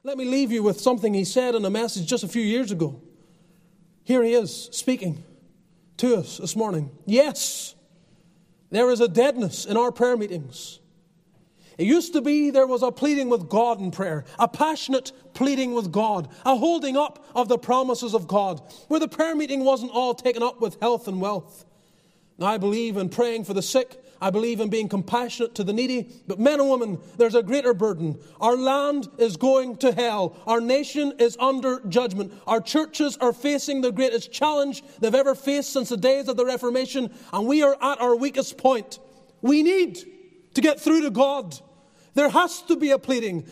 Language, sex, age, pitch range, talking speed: English, male, 30-49, 200-275 Hz, 195 wpm